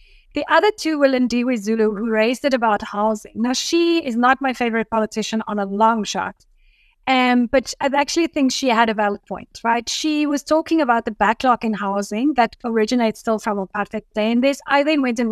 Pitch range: 215-270 Hz